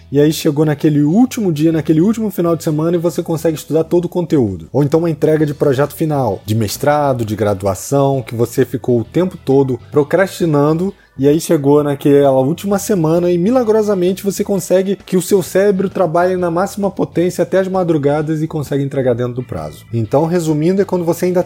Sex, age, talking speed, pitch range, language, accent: male, 20-39, 195 wpm, 130-170 Hz, Portuguese, Brazilian